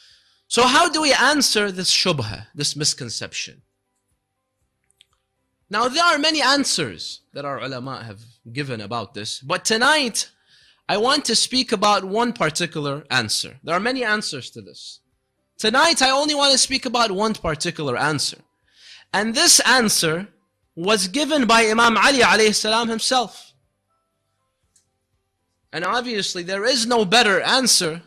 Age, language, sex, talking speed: 30-49, English, male, 135 wpm